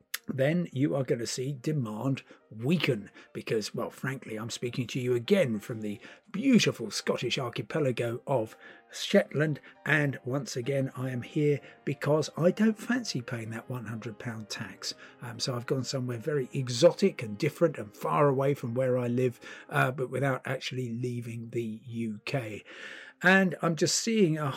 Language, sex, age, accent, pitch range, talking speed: English, male, 50-69, British, 120-155 Hz, 160 wpm